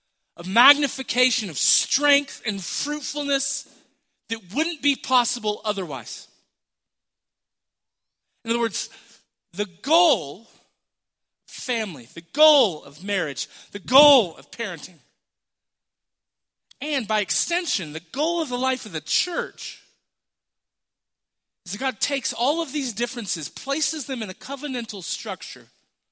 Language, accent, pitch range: English, American, 205-275 Hz